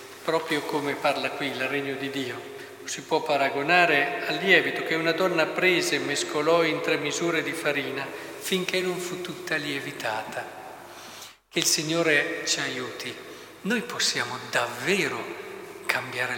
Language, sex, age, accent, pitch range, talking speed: Italian, male, 50-69, native, 145-170 Hz, 140 wpm